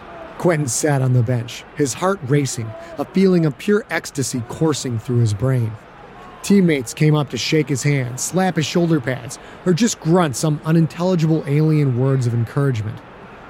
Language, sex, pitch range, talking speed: English, male, 130-175 Hz, 165 wpm